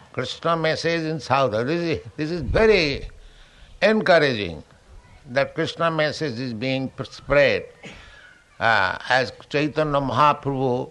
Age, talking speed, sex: 60-79, 110 wpm, male